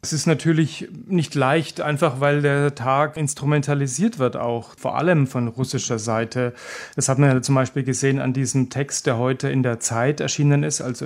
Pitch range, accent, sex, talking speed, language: 130-150 Hz, German, male, 190 wpm, German